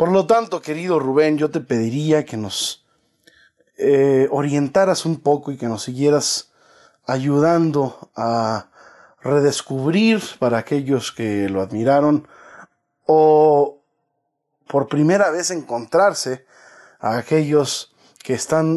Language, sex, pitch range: Spanish, male, 120-155 Hz